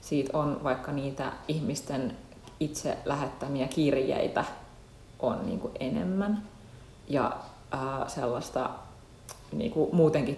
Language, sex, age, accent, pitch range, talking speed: Finnish, female, 30-49, native, 130-160 Hz, 80 wpm